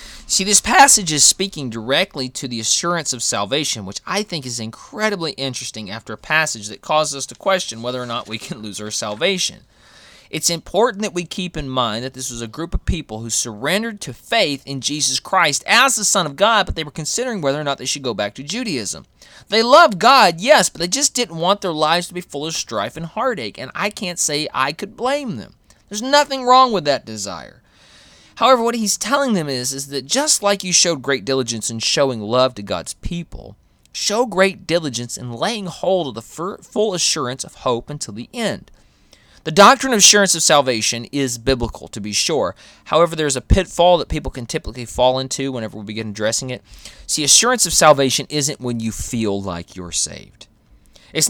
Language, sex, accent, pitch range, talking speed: English, male, American, 120-190 Hz, 205 wpm